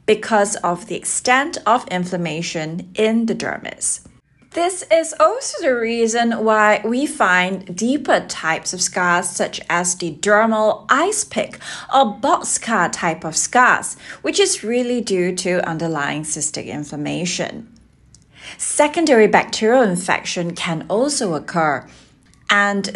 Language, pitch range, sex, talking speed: English, 175-245 Hz, female, 125 wpm